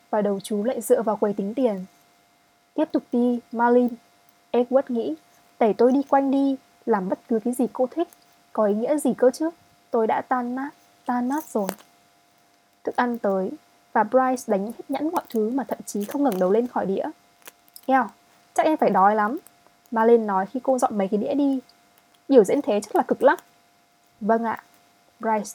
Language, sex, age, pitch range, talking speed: Vietnamese, female, 20-39, 195-260 Hz, 195 wpm